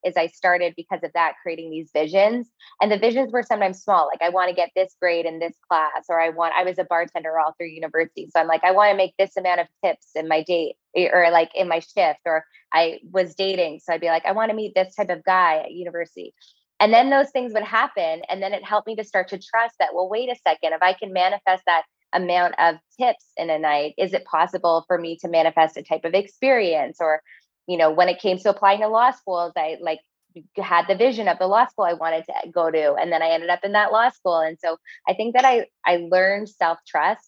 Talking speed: 255 wpm